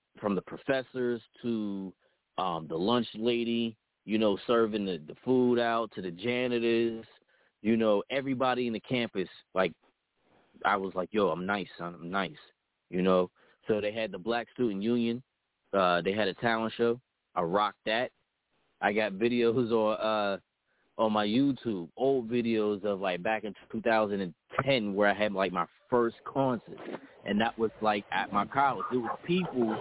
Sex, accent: male, American